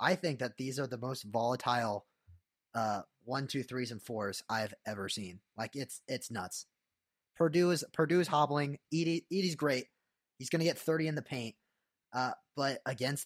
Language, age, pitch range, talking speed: English, 20-39, 115-145 Hz, 180 wpm